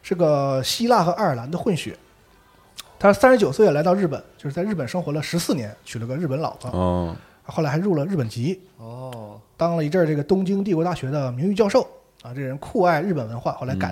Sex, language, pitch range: male, Chinese, 120-180 Hz